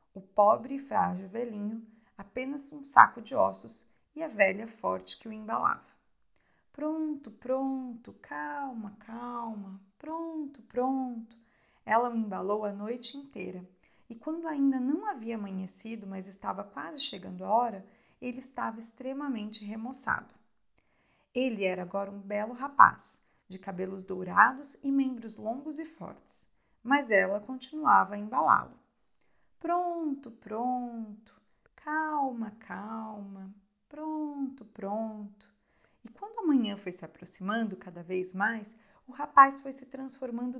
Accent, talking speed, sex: Brazilian, 125 wpm, female